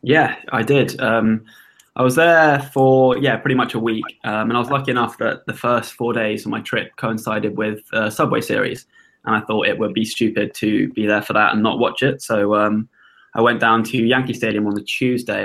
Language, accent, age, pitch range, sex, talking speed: English, British, 10-29, 110-130 Hz, male, 230 wpm